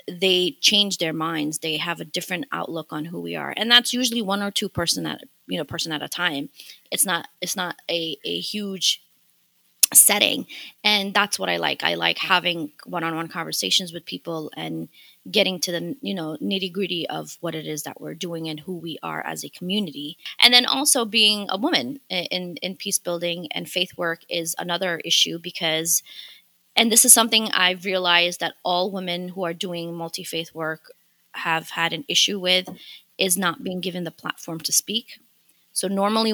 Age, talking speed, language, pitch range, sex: 20-39, 190 wpm, English, 165-200 Hz, female